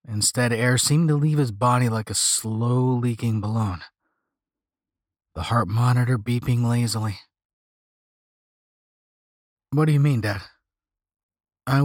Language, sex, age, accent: English, male, 30-49, American